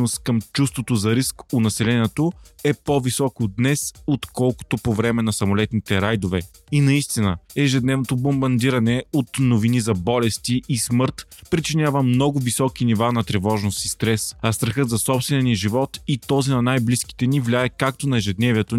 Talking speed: 155 wpm